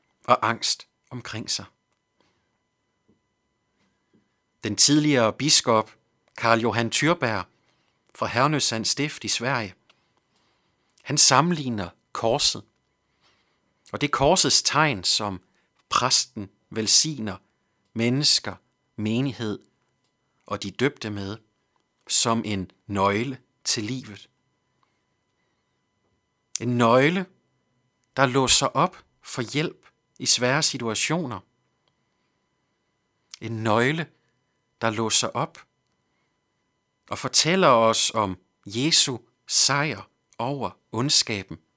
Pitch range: 110-135 Hz